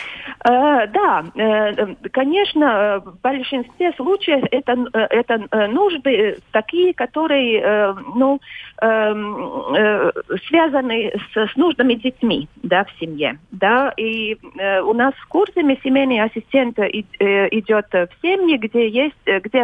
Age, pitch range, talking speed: 40-59, 195-275 Hz, 100 wpm